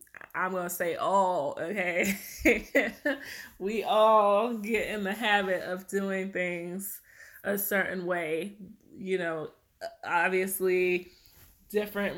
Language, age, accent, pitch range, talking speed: English, 20-39, American, 175-195 Hz, 110 wpm